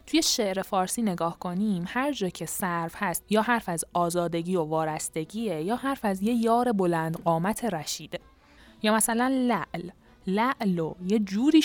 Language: Persian